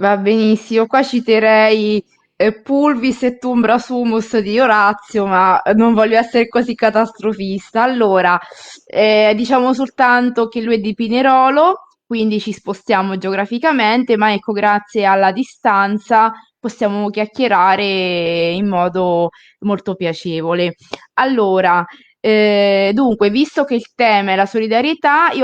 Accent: native